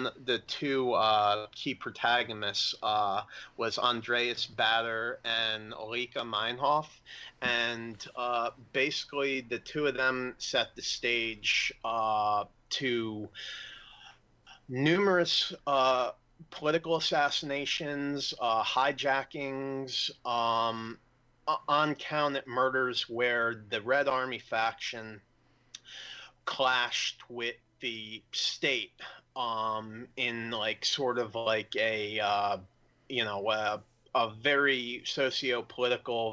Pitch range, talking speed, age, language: 110-130 Hz, 95 wpm, 30-49, English